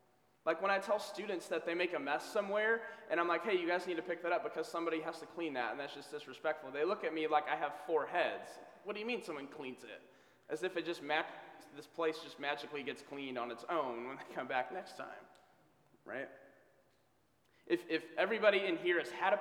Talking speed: 240 wpm